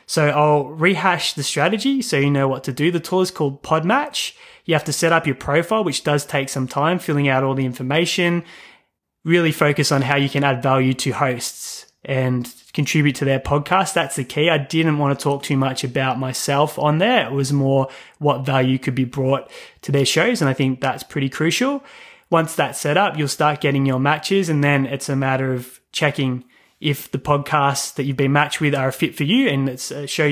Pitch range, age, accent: 135-160 Hz, 20-39, Australian